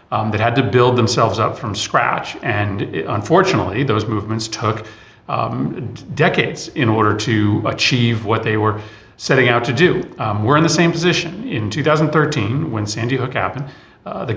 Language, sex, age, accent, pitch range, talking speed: English, male, 40-59, American, 115-150 Hz, 170 wpm